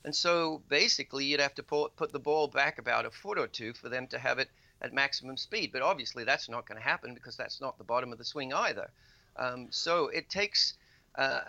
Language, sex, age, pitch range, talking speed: English, male, 50-69, 125-155 Hz, 230 wpm